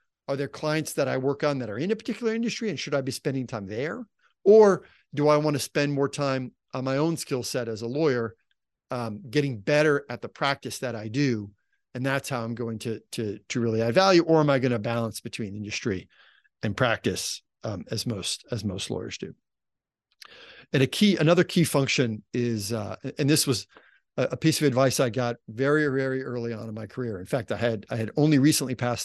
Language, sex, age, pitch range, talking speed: English, male, 50-69, 115-145 Hz, 220 wpm